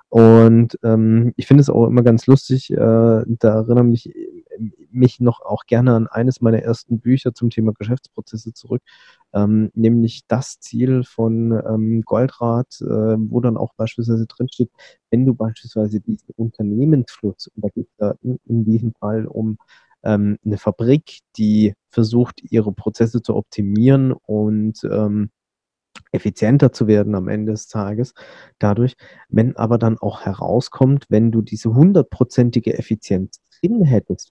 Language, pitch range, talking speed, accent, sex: German, 110-125 Hz, 145 wpm, German, male